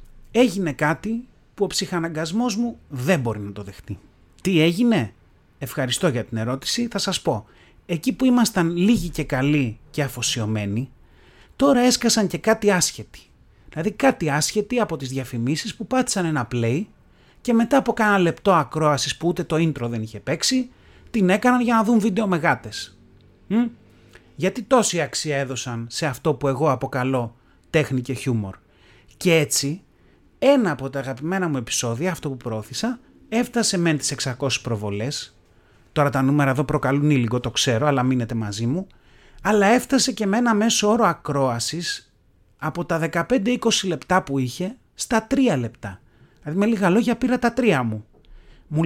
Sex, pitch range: male, 120-205 Hz